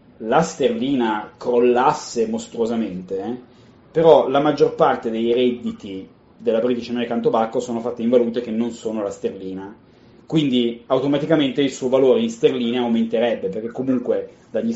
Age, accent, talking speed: 30-49, native, 140 wpm